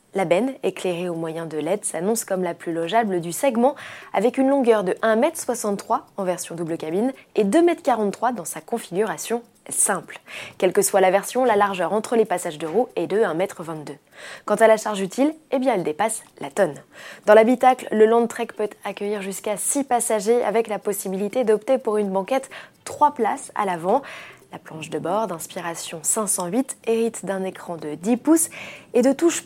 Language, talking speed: French, 190 wpm